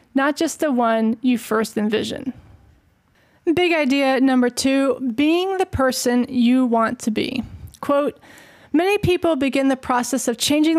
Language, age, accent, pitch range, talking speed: English, 20-39, American, 245-295 Hz, 145 wpm